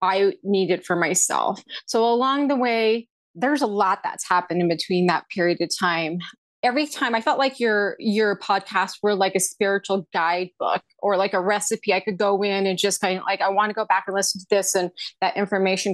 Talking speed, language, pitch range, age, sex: 220 wpm, English, 185-230 Hz, 30-49, female